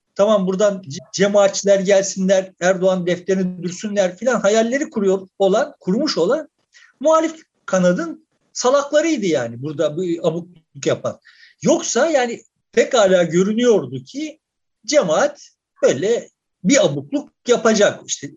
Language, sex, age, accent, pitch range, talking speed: Turkish, male, 60-79, native, 190-300 Hz, 110 wpm